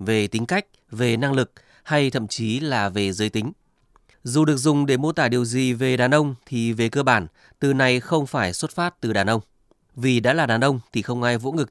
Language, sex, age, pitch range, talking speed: Vietnamese, male, 20-39, 105-140 Hz, 240 wpm